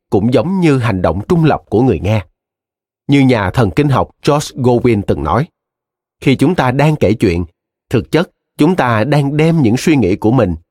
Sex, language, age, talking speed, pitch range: male, Vietnamese, 30-49, 200 wpm, 100-145 Hz